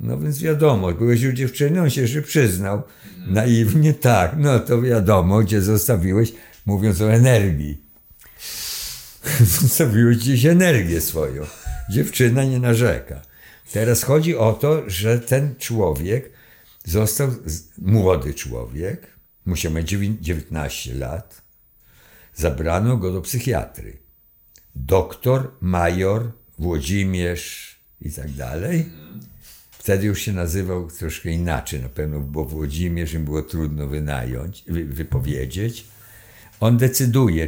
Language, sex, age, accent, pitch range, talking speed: Polish, male, 60-79, native, 80-120 Hz, 110 wpm